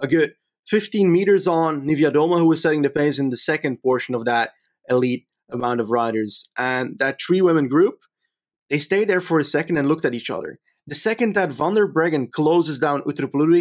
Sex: male